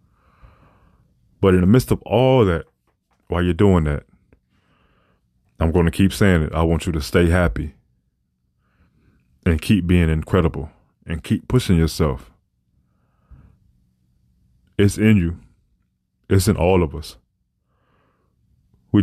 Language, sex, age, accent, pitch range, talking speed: English, male, 20-39, American, 80-95 Hz, 125 wpm